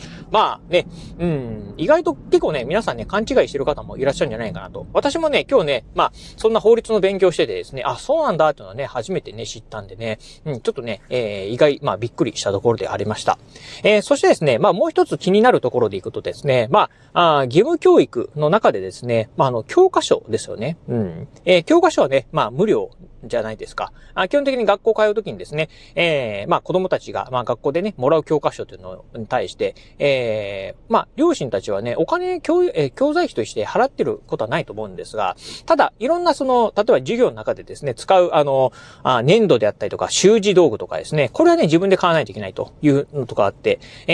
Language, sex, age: Japanese, male, 30-49